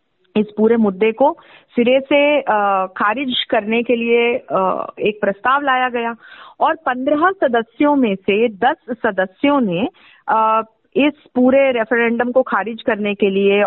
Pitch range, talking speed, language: 225-295 Hz, 130 wpm, Hindi